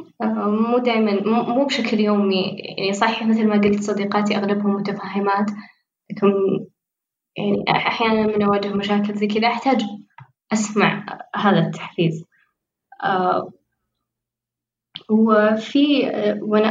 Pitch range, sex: 190-220 Hz, female